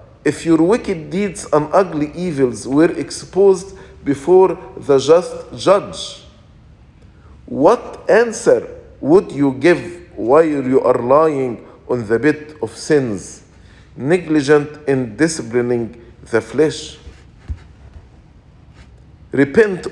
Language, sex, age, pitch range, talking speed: English, male, 50-69, 120-170 Hz, 100 wpm